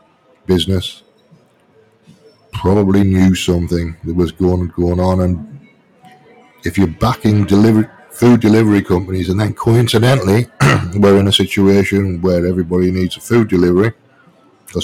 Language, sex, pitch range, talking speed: English, male, 90-100 Hz, 125 wpm